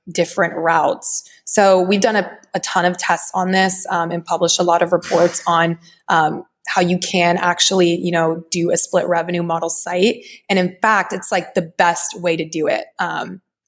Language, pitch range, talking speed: English, 175-195 Hz, 195 wpm